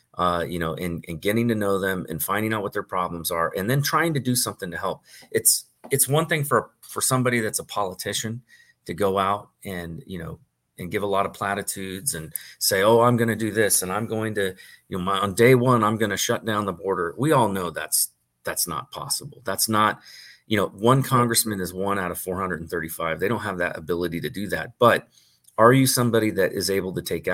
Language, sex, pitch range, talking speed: English, male, 90-110 Hz, 240 wpm